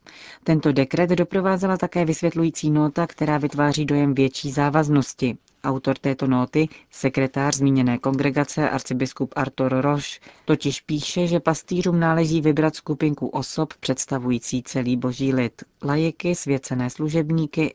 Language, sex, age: Czech, female, 40-59